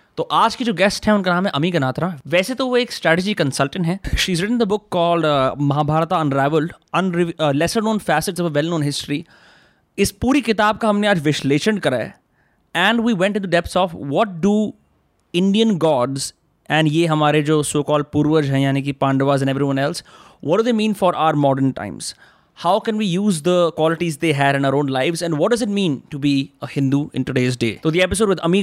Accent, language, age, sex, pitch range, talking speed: native, Hindi, 20-39, male, 130-175 Hz, 190 wpm